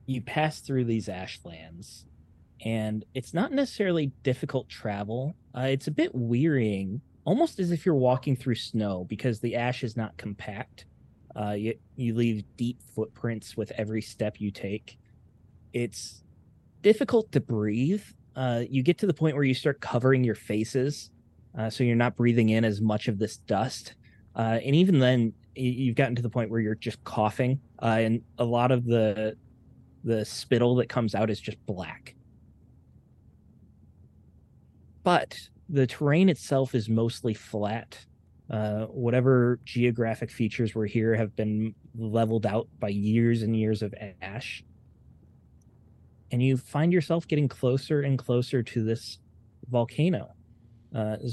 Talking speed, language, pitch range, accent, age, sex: 150 wpm, English, 110-130 Hz, American, 20-39, male